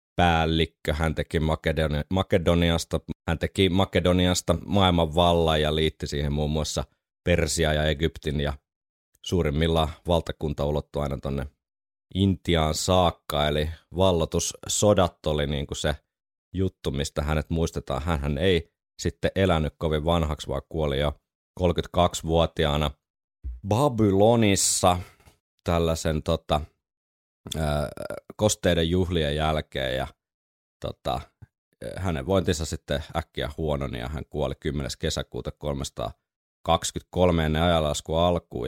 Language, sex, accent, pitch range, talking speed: Finnish, male, native, 75-90 Hz, 105 wpm